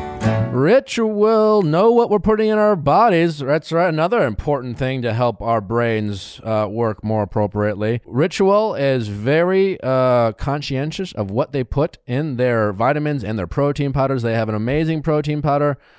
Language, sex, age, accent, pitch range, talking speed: English, male, 30-49, American, 110-150 Hz, 165 wpm